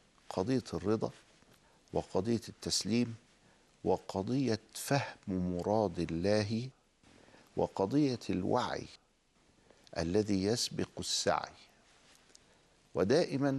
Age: 50-69